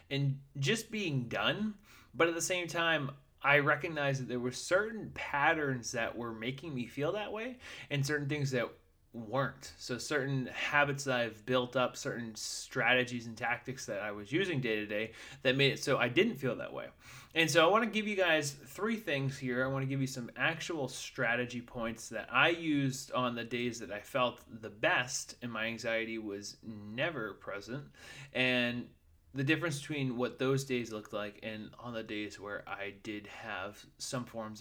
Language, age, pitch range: English, 20-39, 115-150 Hz